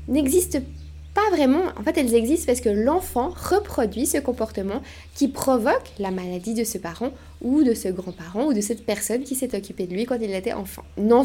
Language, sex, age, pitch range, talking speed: French, female, 20-39, 195-275 Hz, 205 wpm